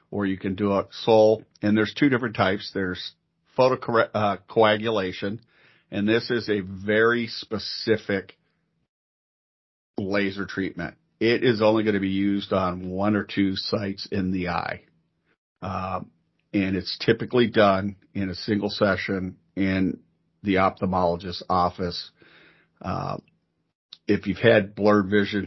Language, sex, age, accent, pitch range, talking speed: English, male, 50-69, American, 95-105 Hz, 130 wpm